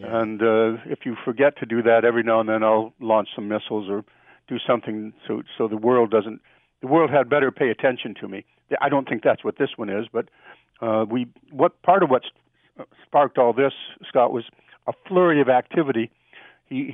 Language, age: English, 60-79